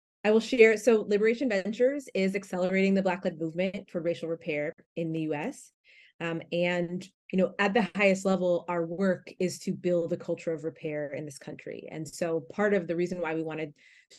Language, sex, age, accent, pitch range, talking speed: English, female, 30-49, American, 165-195 Hz, 200 wpm